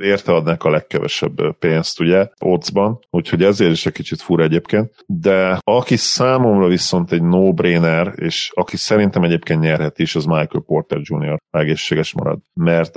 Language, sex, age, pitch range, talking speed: Hungarian, male, 40-59, 85-95 Hz, 155 wpm